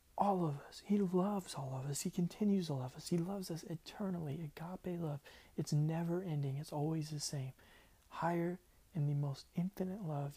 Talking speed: 185 wpm